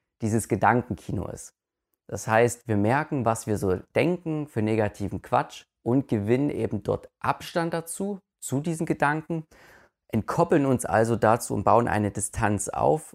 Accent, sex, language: German, male, German